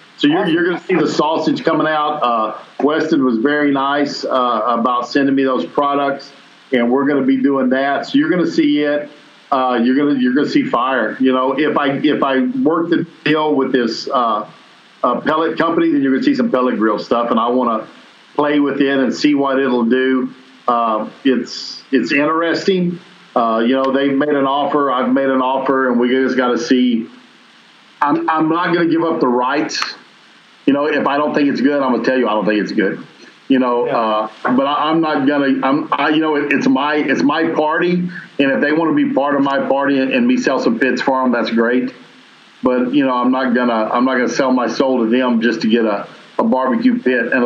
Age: 50-69